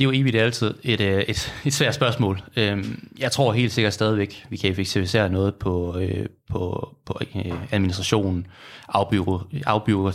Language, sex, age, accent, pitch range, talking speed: Danish, male, 20-39, native, 95-115 Hz, 130 wpm